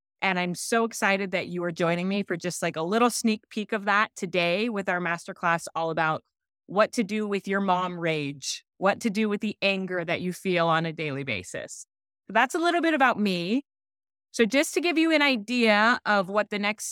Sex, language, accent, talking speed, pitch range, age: female, English, American, 215 wpm, 180-235 Hz, 30-49